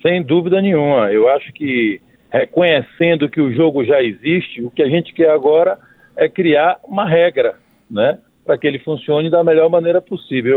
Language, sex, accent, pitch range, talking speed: Portuguese, male, Brazilian, 150-185 Hz, 175 wpm